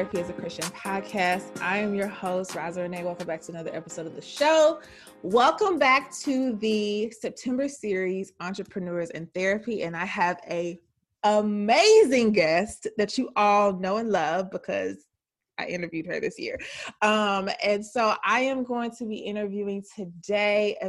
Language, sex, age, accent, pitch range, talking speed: English, female, 20-39, American, 180-215 Hz, 160 wpm